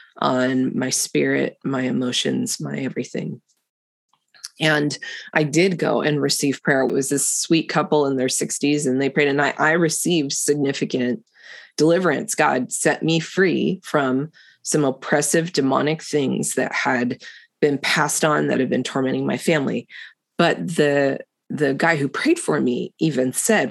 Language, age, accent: English, 20-39, American